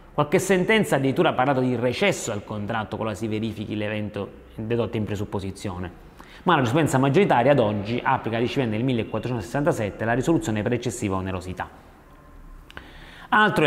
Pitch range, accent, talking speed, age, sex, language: 110-160 Hz, native, 145 wpm, 30-49, male, Italian